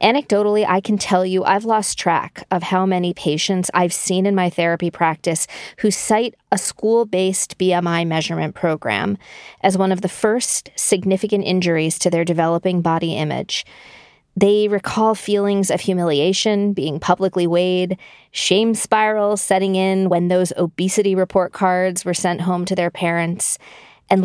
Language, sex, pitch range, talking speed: English, female, 180-215 Hz, 150 wpm